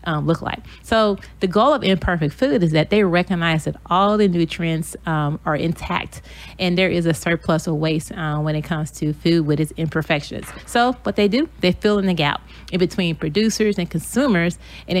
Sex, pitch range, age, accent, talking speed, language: female, 160-190 Hz, 30-49, American, 205 wpm, English